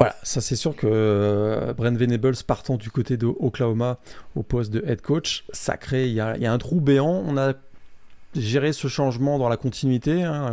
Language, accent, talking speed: French, French, 195 wpm